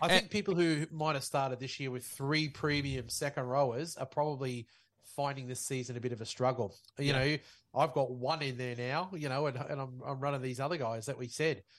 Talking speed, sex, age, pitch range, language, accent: 225 wpm, male, 30-49, 125-155 Hz, English, Australian